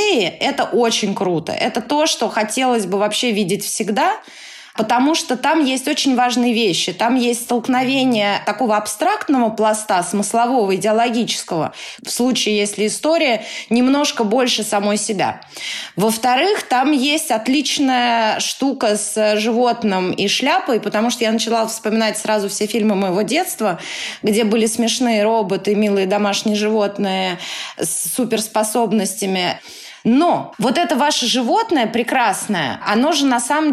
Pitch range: 210-255 Hz